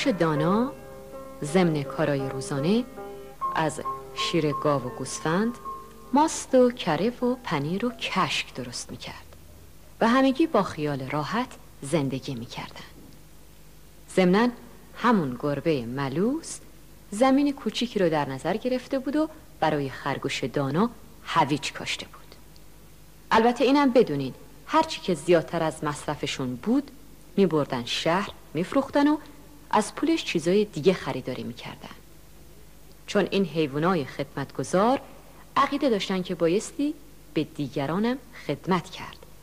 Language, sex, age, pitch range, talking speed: Persian, female, 50-69, 150-245 Hz, 115 wpm